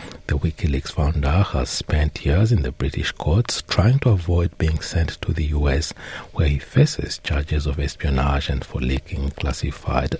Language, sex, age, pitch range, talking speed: English, male, 60-79, 75-90 Hz, 165 wpm